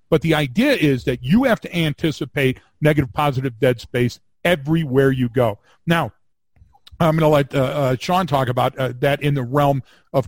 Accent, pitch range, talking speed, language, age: American, 125-155 Hz, 185 wpm, English, 50-69